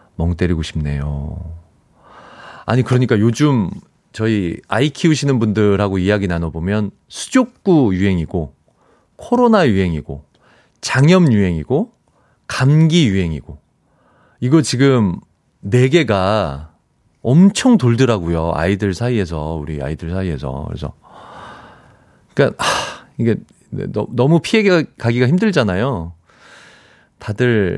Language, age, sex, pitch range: Korean, 40-59, male, 90-150 Hz